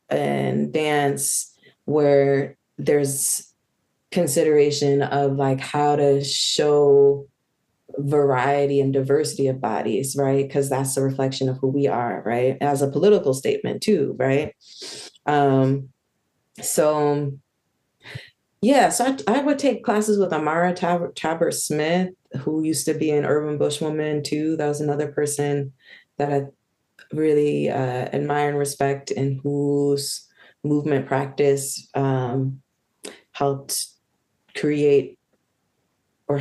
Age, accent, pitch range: 20-39, American, 135-155 Hz